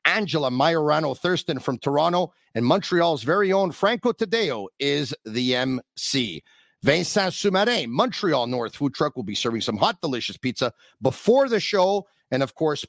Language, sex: English, male